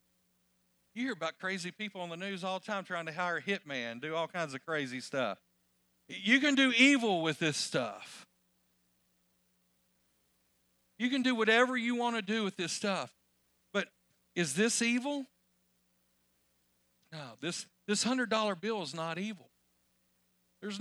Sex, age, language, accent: male, 50-69, English, American